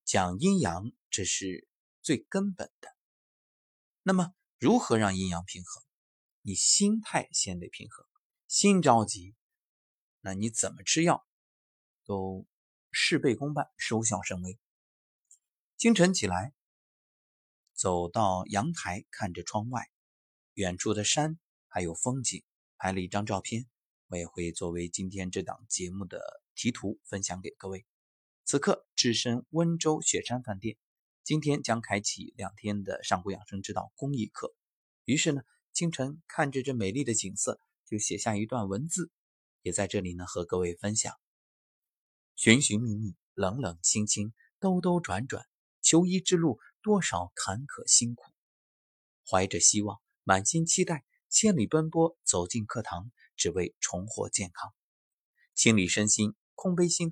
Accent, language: native, Chinese